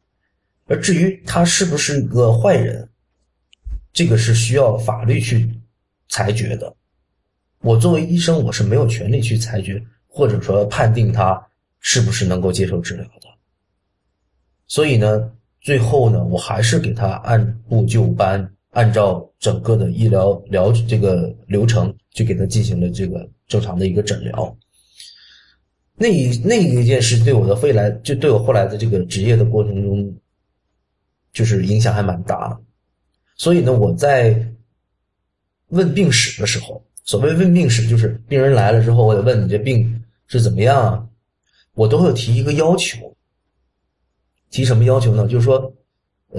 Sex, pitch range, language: male, 100-120 Hz, Chinese